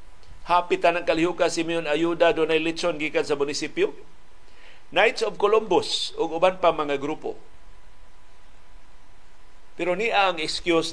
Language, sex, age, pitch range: Filipino, male, 50-69, 145-195 Hz